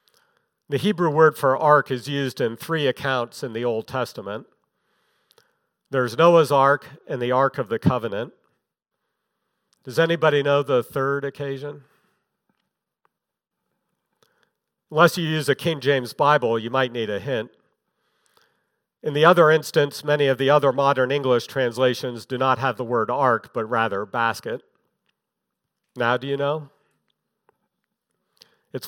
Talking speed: 135 wpm